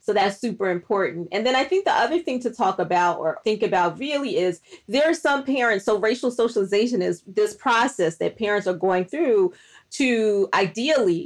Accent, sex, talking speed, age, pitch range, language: American, female, 190 wpm, 30-49, 180-230 Hz, English